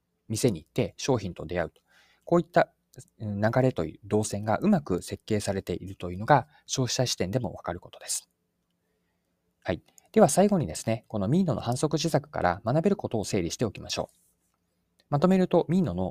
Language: Japanese